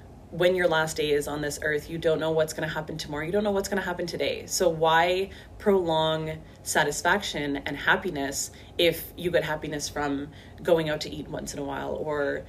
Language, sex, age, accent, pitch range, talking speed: English, female, 30-49, American, 145-165 Hz, 210 wpm